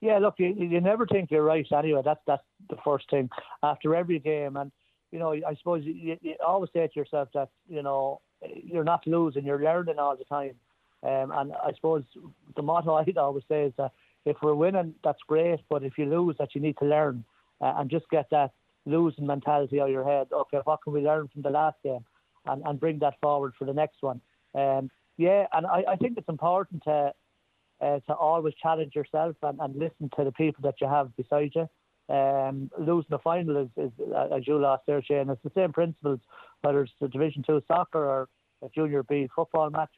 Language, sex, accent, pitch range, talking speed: English, male, Irish, 140-160 Hz, 220 wpm